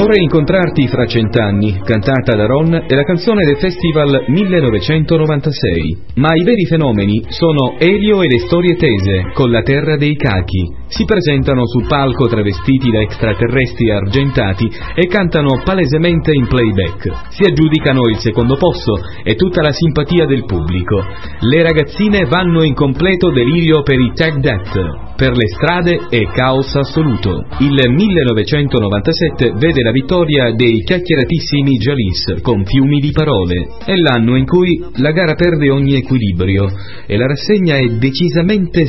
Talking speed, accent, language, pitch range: 145 wpm, native, Italian, 115-160 Hz